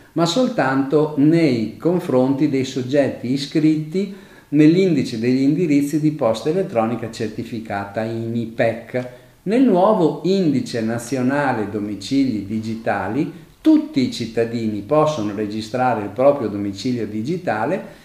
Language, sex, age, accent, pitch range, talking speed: Italian, male, 50-69, native, 110-155 Hz, 105 wpm